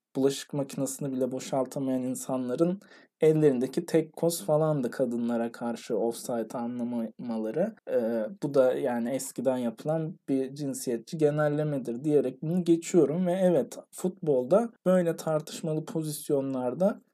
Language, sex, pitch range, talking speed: Turkish, male, 140-185 Hz, 110 wpm